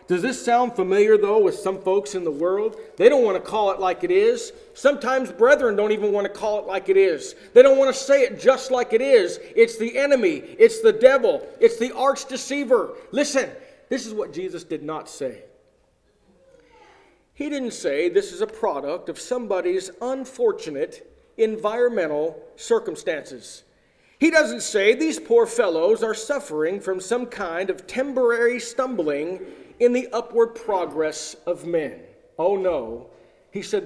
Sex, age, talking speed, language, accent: male, 40-59, 170 wpm, English, American